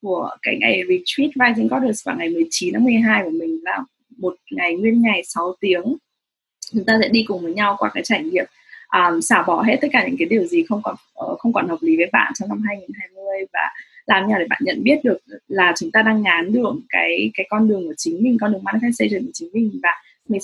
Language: English